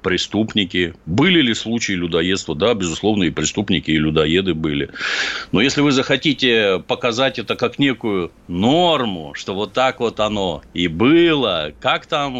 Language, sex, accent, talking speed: Russian, male, native, 145 wpm